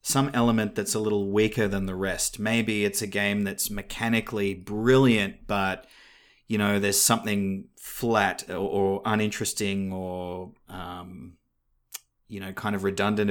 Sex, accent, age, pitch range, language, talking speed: male, Australian, 30-49, 100-115 Hz, English, 145 wpm